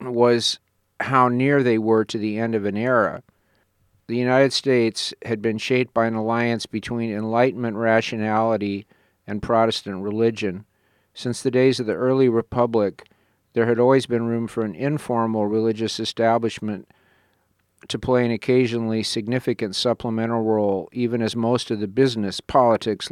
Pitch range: 105-120 Hz